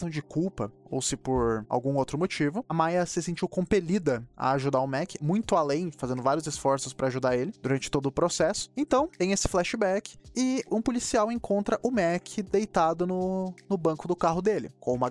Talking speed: 190 wpm